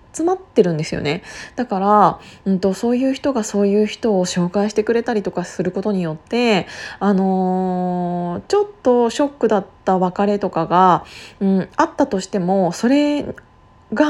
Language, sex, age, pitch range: Japanese, female, 20-39, 185-220 Hz